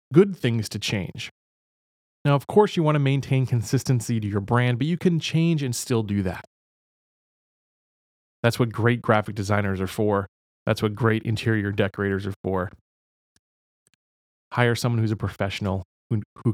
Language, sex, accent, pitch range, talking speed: English, male, American, 105-165 Hz, 160 wpm